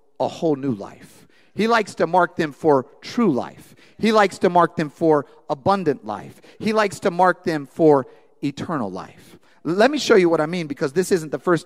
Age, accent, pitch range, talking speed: 40-59, American, 155-205 Hz, 205 wpm